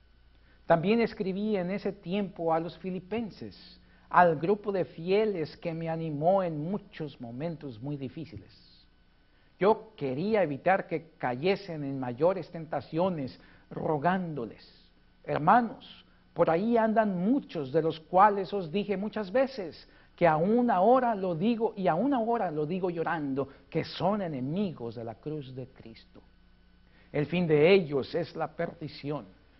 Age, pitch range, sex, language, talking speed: 50-69, 135-185 Hz, male, Spanish, 135 wpm